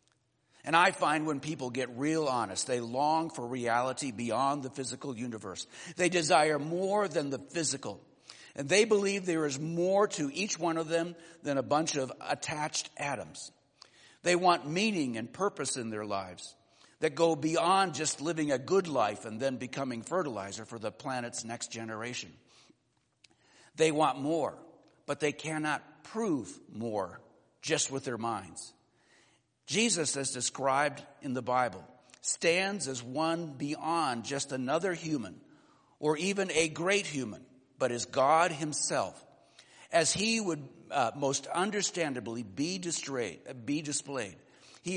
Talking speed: 145 wpm